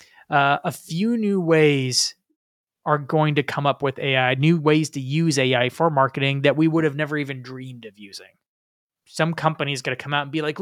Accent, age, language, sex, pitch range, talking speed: American, 20-39, English, male, 140-190 Hz, 210 wpm